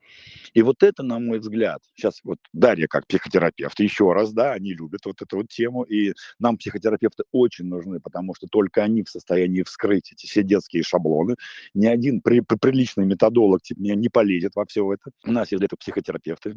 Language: Russian